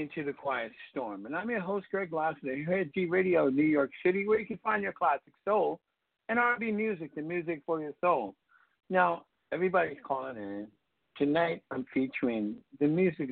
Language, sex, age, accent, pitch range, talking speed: English, male, 60-79, American, 130-185 Hz, 190 wpm